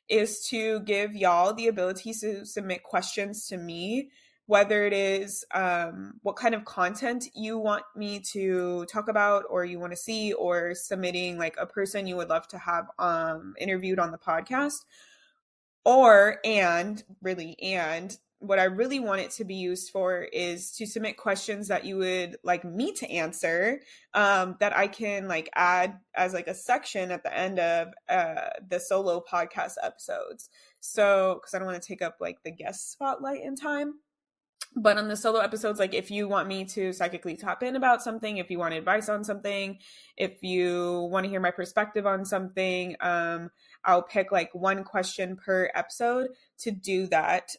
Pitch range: 180-215 Hz